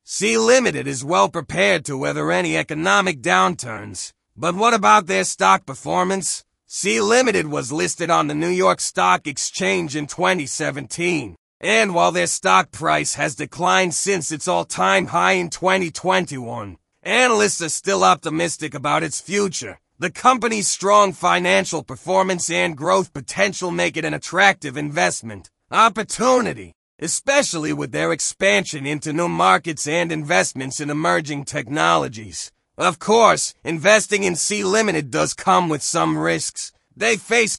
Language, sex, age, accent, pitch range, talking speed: English, male, 30-49, American, 145-190 Hz, 135 wpm